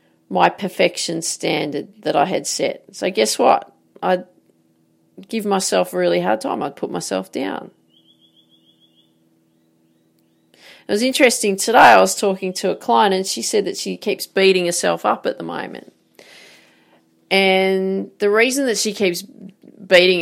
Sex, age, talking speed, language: female, 40-59, 150 wpm, English